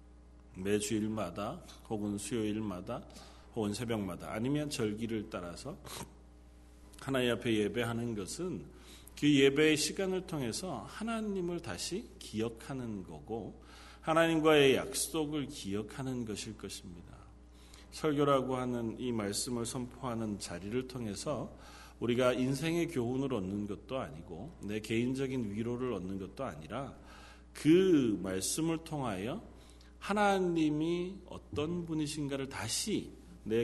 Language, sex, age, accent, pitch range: Korean, male, 40-59, native, 100-150 Hz